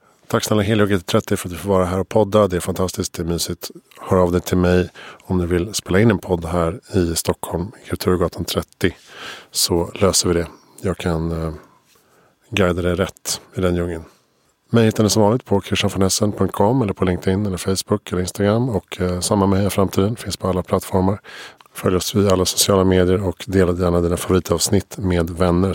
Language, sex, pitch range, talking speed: Swedish, male, 90-100 Hz, 200 wpm